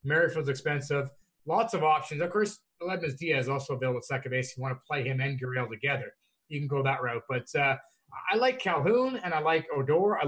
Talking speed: 220 wpm